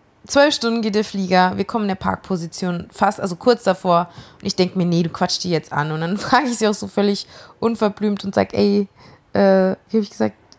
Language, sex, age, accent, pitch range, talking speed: German, female, 20-39, German, 180-215 Hz, 230 wpm